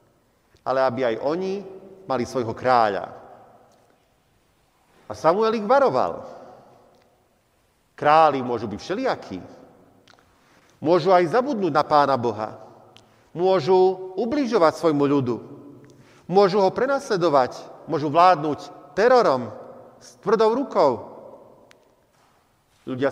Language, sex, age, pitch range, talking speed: Slovak, male, 40-59, 120-165 Hz, 90 wpm